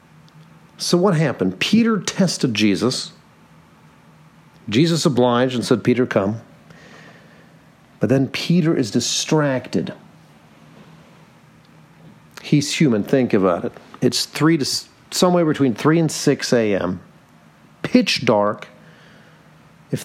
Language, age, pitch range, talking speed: English, 50-69, 120-155 Hz, 100 wpm